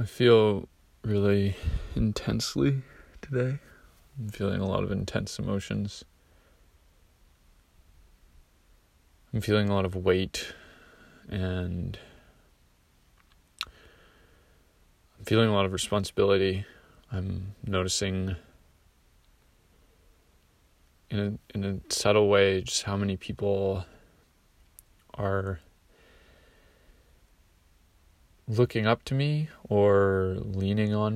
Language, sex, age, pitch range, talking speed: English, male, 20-39, 80-105 Hz, 85 wpm